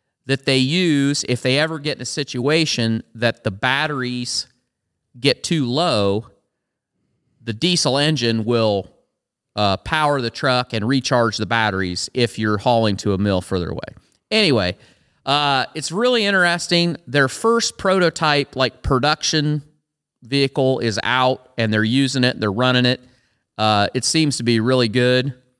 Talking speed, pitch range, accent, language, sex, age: 150 wpm, 115-150 Hz, American, English, male, 40-59